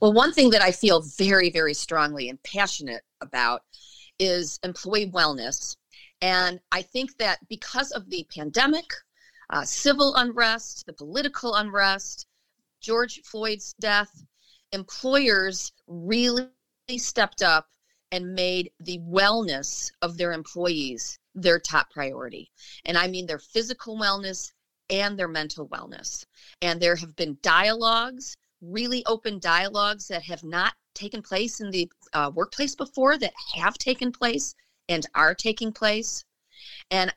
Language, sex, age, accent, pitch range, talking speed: English, female, 40-59, American, 170-225 Hz, 135 wpm